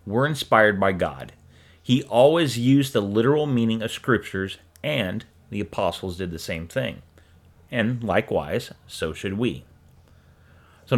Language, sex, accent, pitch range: English, male, American, 90-125 Hz